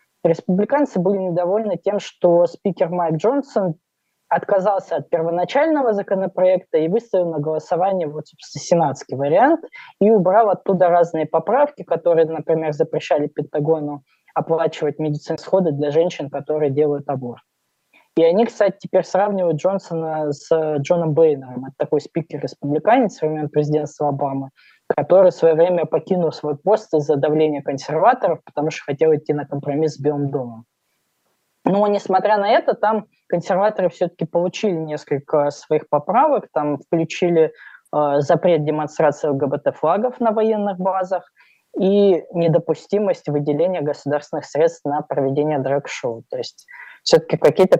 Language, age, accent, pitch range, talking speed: Russian, 20-39, native, 150-185 Hz, 130 wpm